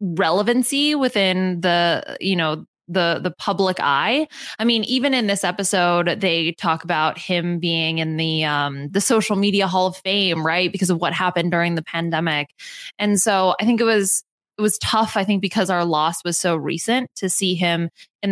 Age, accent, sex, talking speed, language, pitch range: 20-39, American, female, 190 wpm, English, 175-215 Hz